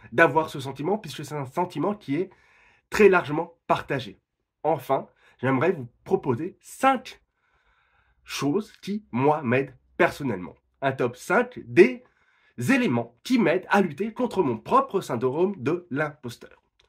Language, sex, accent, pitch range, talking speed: French, male, French, 130-200 Hz, 130 wpm